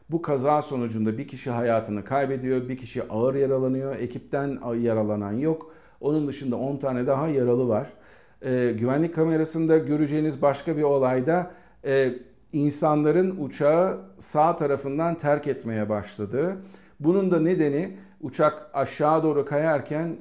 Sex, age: male, 50-69